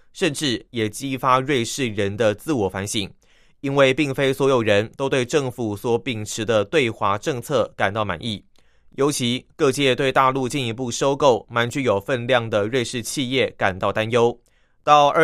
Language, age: Chinese, 20-39